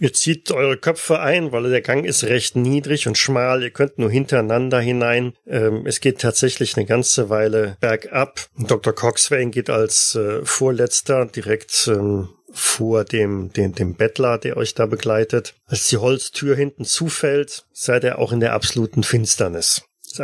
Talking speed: 170 wpm